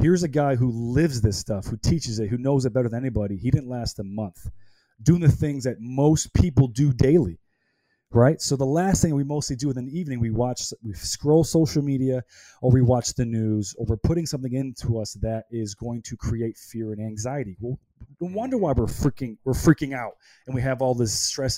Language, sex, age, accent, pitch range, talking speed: English, male, 30-49, American, 115-145 Hz, 220 wpm